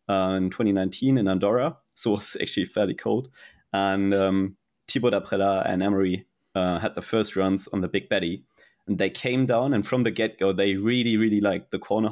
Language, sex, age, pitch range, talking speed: English, male, 30-49, 95-115 Hz, 200 wpm